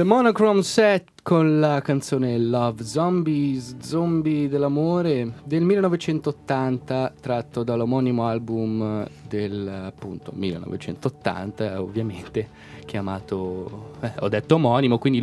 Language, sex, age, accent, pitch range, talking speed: Italian, male, 20-39, native, 105-145 Hz, 95 wpm